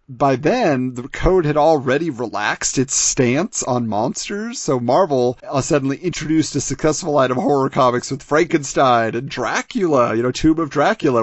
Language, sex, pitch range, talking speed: English, male, 130-170 Hz, 165 wpm